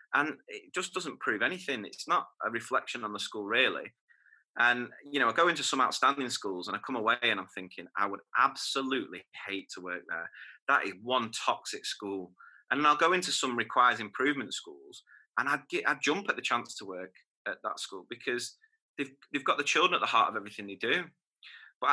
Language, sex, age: English, male, 30-49